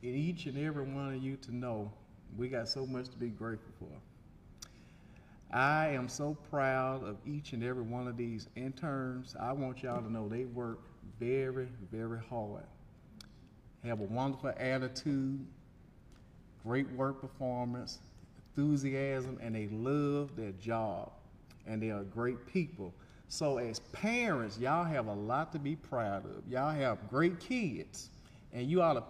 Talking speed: 155 wpm